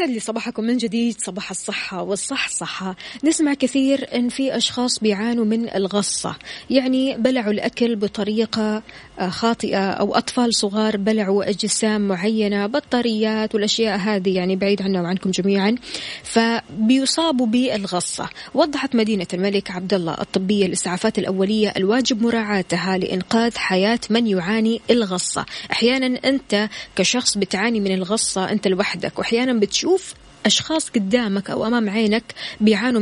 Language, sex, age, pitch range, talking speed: Arabic, female, 20-39, 200-245 Hz, 125 wpm